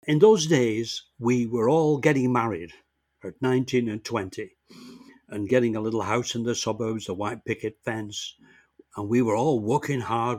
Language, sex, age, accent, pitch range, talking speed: English, male, 60-79, British, 120-175 Hz, 175 wpm